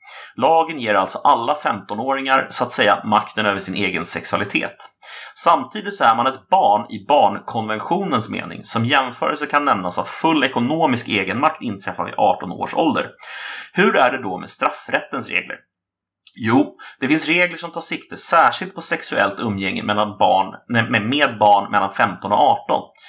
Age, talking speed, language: 30-49, 155 wpm, Swedish